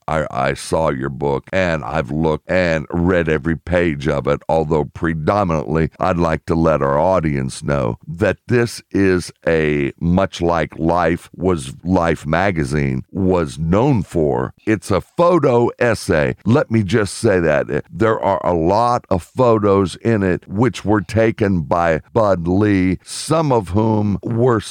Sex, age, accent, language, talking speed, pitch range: male, 60-79, American, English, 150 wpm, 80-120 Hz